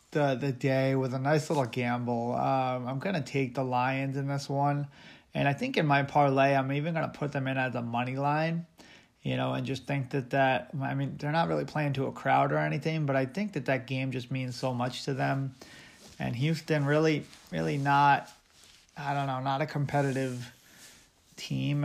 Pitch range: 130-150 Hz